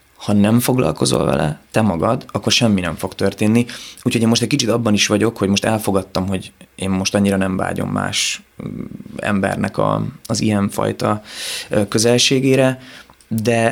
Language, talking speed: Hungarian, 155 wpm